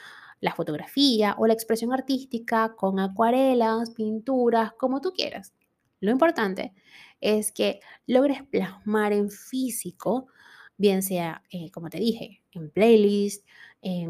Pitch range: 200-260 Hz